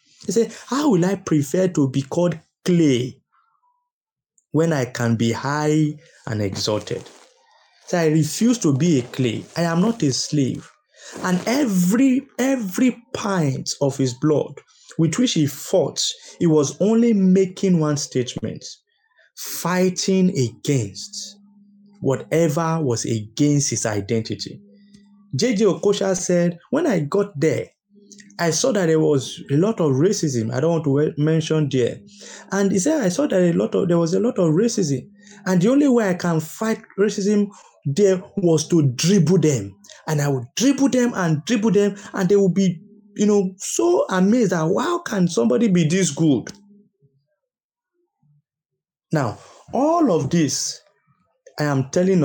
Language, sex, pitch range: English, male, 145-205 Hz